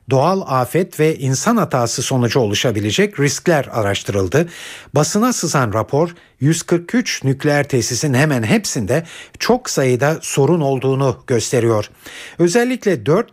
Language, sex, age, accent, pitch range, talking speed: Turkish, male, 60-79, native, 120-170 Hz, 110 wpm